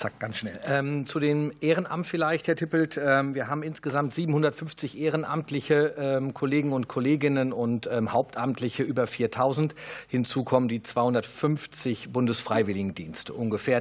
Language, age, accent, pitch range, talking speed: German, 50-69, German, 120-150 Hz, 115 wpm